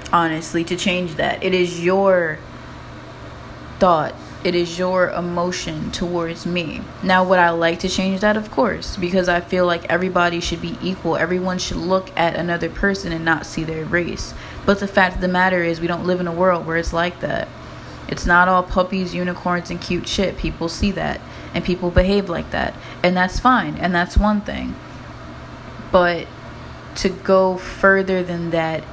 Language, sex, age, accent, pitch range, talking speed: English, female, 20-39, American, 170-190 Hz, 185 wpm